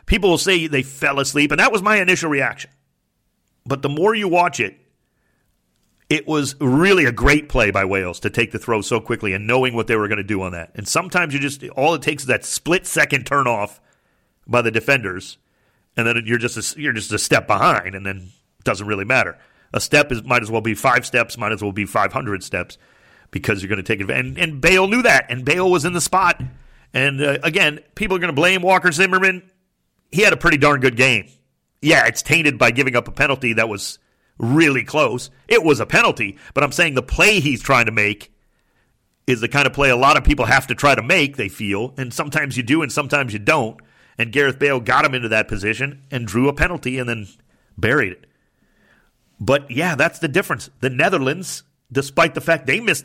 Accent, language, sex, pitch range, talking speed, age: American, English, male, 115-160 Hz, 225 wpm, 40-59